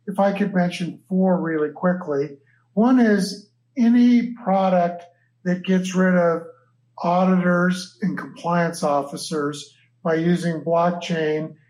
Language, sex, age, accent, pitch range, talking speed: English, male, 50-69, American, 155-190 Hz, 115 wpm